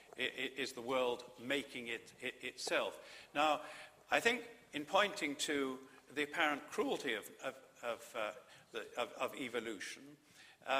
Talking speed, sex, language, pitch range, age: 150 wpm, male, English, 130-160 Hz, 50-69